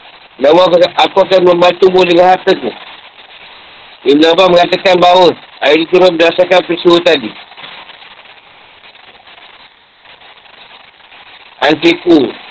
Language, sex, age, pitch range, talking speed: Malay, male, 50-69, 170-190 Hz, 85 wpm